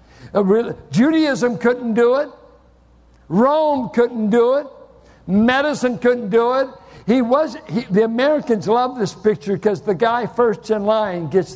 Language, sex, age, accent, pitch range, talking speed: English, male, 60-79, American, 140-210 Hz, 150 wpm